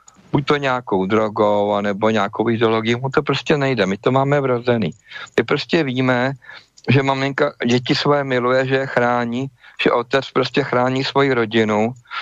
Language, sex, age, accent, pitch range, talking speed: Czech, male, 50-69, native, 120-140 Hz, 155 wpm